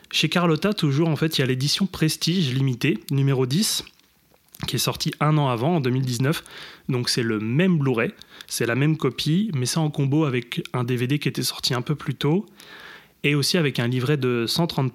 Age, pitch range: 20-39, 125-155 Hz